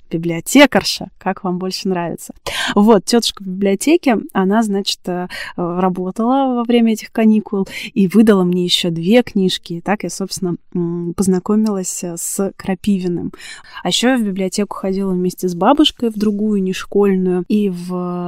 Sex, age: female, 20-39